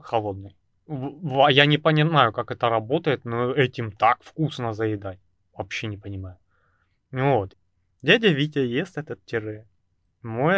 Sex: male